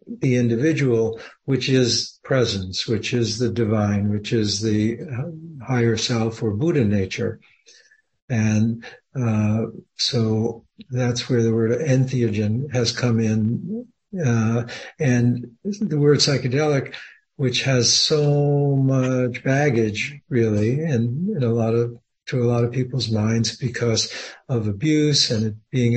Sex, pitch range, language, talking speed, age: male, 115-135 Hz, English, 130 wpm, 60-79